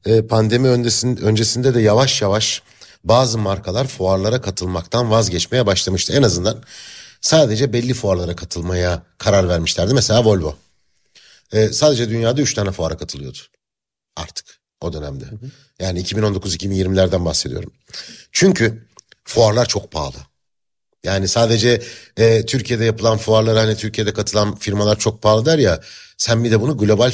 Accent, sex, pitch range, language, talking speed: native, male, 95-120 Hz, Turkish, 120 wpm